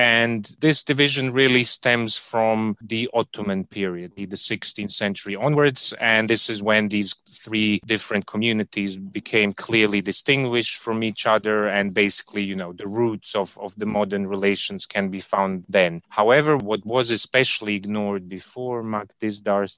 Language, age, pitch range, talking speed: Turkish, 30-49, 100-115 Hz, 150 wpm